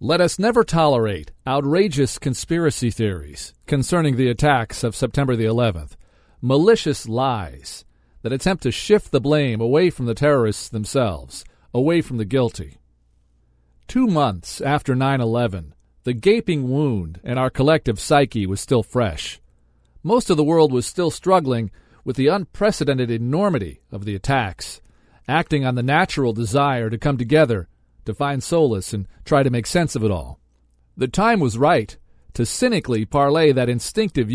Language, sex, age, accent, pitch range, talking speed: English, male, 40-59, American, 115-160 Hz, 150 wpm